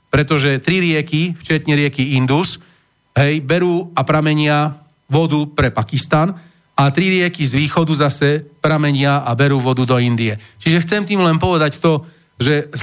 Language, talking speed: Slovak, 155 wpm